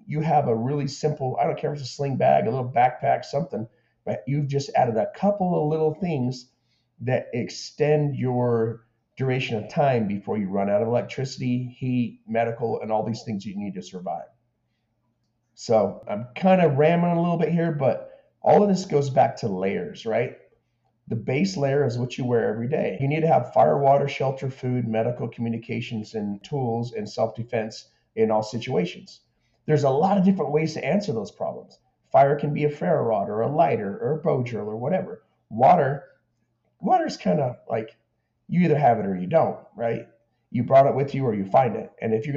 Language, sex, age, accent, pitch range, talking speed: English, male, 40-59, American, 115-150 Hz, 200 wpm